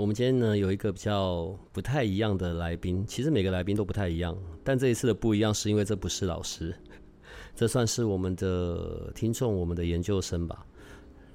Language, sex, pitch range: Chinese, male, 90-110 Hz